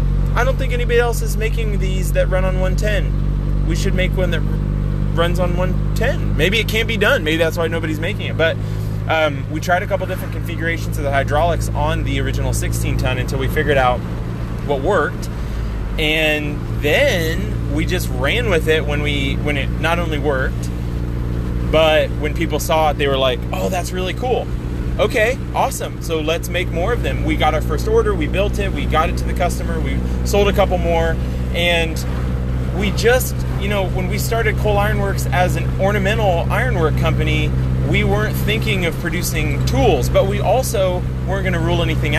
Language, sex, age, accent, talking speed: English, male, 20-39, American, 190 wpm